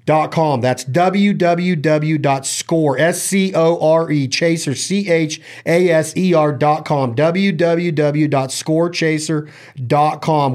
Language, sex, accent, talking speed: English, male, American, 70 wpm